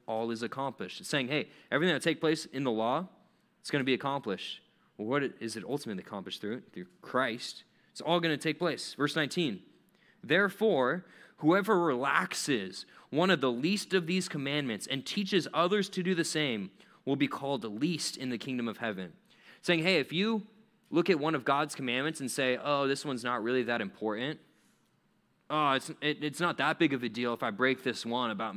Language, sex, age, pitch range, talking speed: English, male, 20-39, 125-165 Hz, 210 wpm